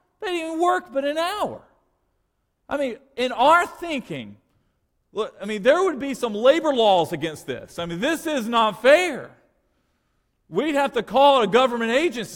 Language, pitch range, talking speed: English, 185-285 Hz, 175 wpm